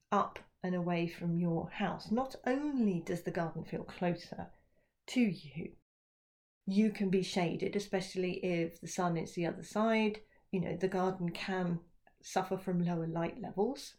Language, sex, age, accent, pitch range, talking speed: English, female, 40-59, British, 175-205 Hz, 160 wpm